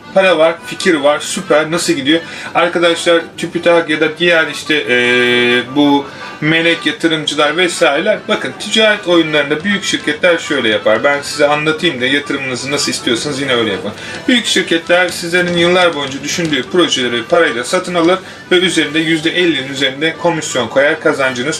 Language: Turkish